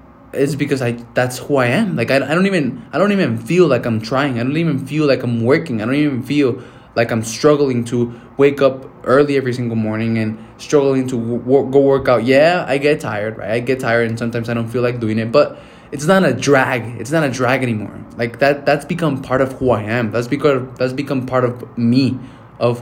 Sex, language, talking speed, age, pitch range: male, English, 235 wpm, 20-39, 120-135 Hz